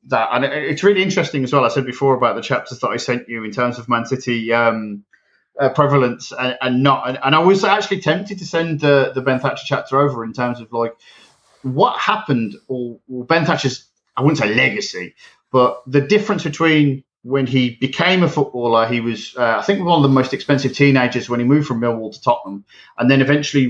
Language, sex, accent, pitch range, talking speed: English, male, British, 120-155 Hz, 220 wpm